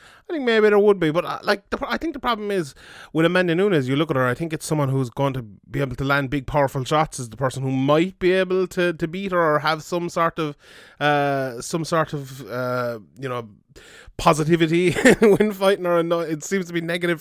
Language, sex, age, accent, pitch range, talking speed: English, male, 20-39, Irish, 140-165 Hz, 240 wpm